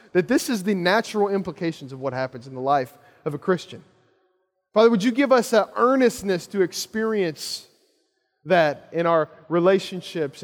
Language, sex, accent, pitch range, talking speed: English, male, American, 150-205 Hz, 160 wpm